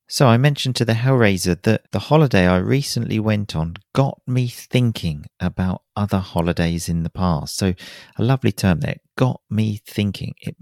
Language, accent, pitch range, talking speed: English, British, 95-125 Hz, 175 wpm